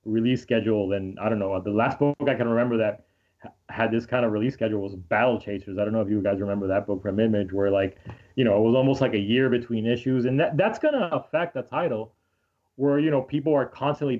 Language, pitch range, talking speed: English, 110-135 Hz, 240 wpm